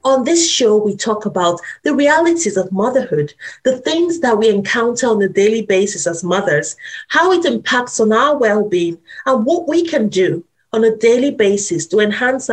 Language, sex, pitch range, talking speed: English, female, 195-275 Hz, 180 wpm